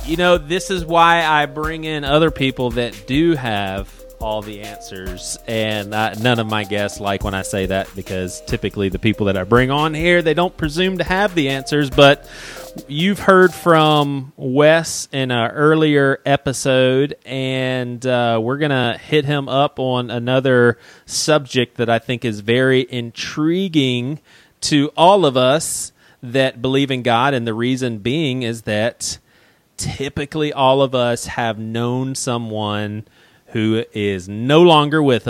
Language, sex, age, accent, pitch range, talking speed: English, male, 30-49, American, 105-140 Hz, 160 wpm